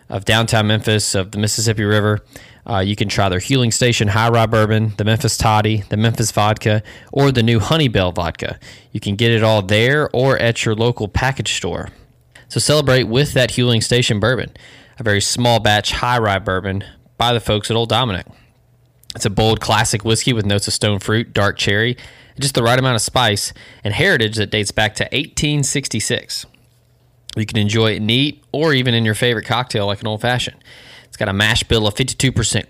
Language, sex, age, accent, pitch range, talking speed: English, male, 20-39, American, 105-125 Hz, 200 wpm